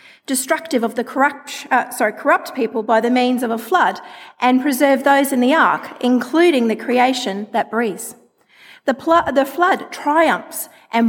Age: 40-59